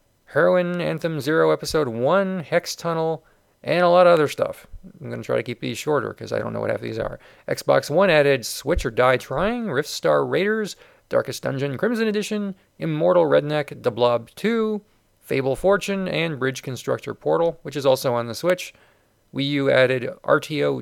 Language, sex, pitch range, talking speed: English, male, 130-175 Hz, 185 wpm